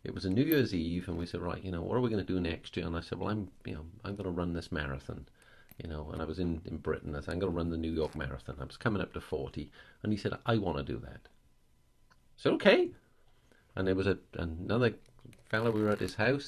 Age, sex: 40-59, male